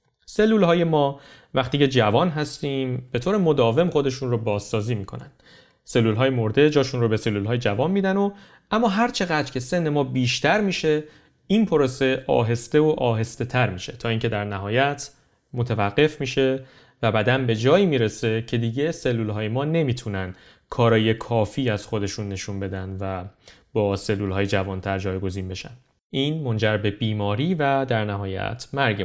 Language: Persian